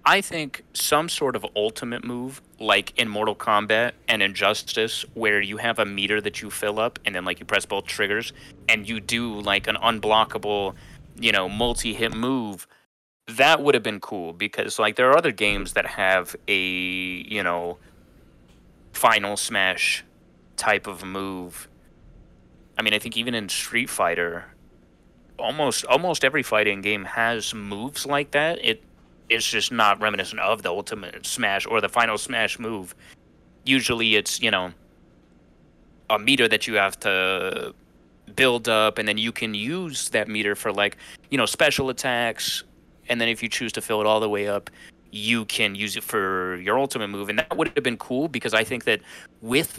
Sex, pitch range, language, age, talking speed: male, 95-120 Hz, English, 30-49, 175 wpm